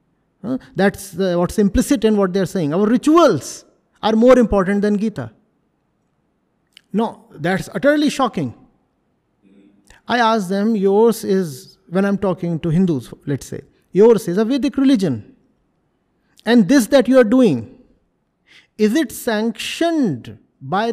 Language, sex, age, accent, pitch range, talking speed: English, male, 50-69, Indian, 180-255 Hz, 130 wpm